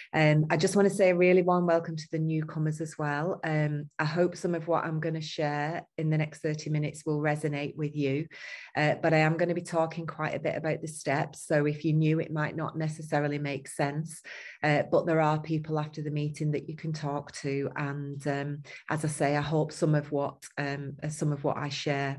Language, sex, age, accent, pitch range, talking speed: English, female, 30-49, British, 145-160 Hz, 235 wpm